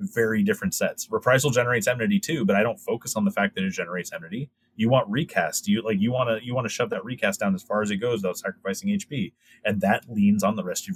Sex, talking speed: male, 265 wpm